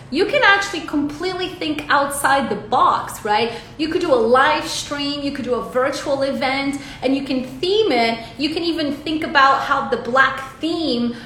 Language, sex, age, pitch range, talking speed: English, female, 30-49, 245-315 Hz, 185 wpm